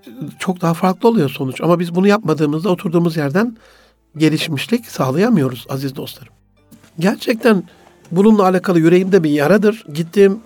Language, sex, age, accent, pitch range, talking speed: Turkish, male, 60-79, native, 155-190 Hz, 125 wpm